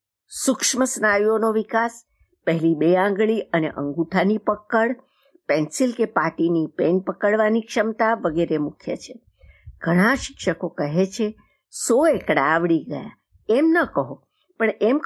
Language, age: Gujarati, 60-79